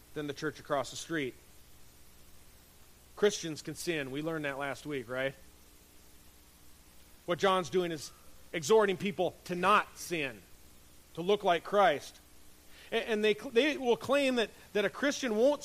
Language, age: English, 40-59